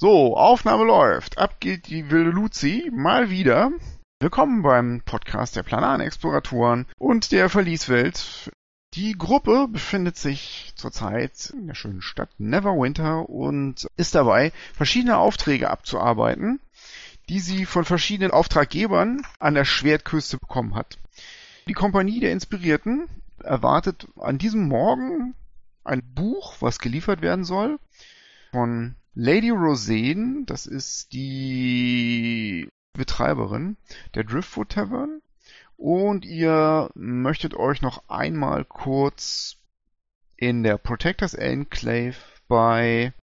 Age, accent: 40-59, German